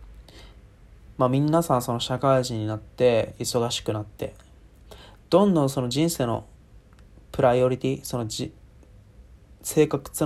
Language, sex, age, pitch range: Japanese, male, 20-39, 110-135 Hz